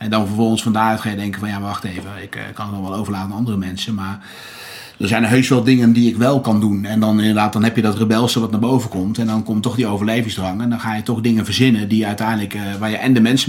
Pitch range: 110-120 Hz